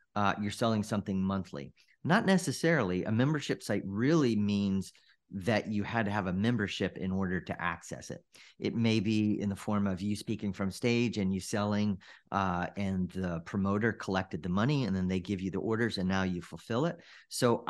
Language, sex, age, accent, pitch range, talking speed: English, male, 40-59, American, 95-115 Hz, 195 wpm